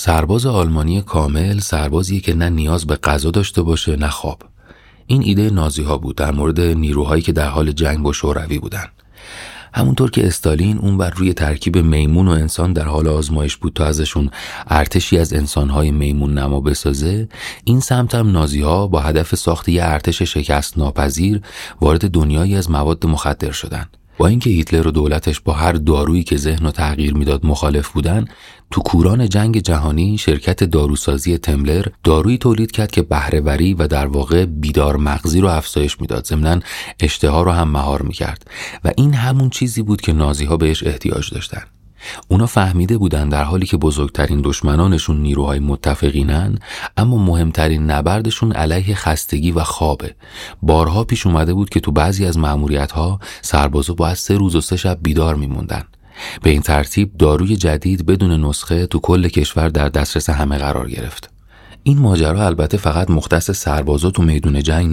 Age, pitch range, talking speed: 30-49, 75-95 Hz, 165 wpm